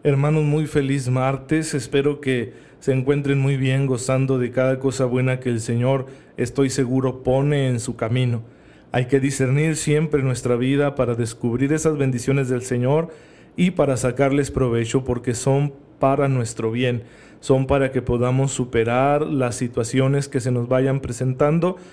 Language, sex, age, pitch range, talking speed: Spanish, male, 40-59, 125-145 Hz, 155 wpm